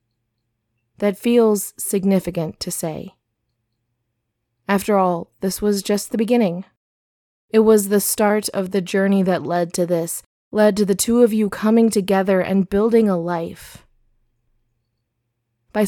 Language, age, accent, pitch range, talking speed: English, 20-39, American, 120-200 Hz, 135 wpm